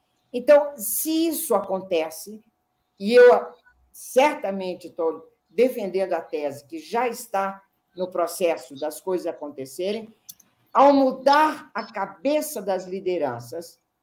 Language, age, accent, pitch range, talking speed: Portuguese, 50-69, Brazilian, 180-250 Hz, 105 wpm